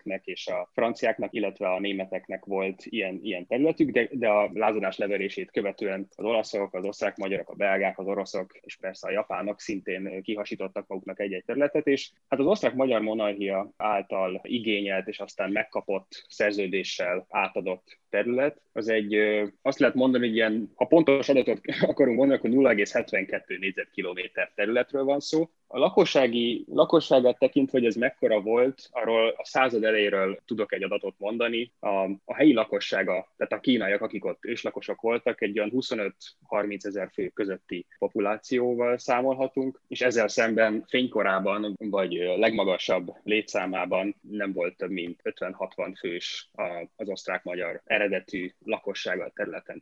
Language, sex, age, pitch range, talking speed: Hungarian, male, 20-39, 100-125 Hz, 140 wpm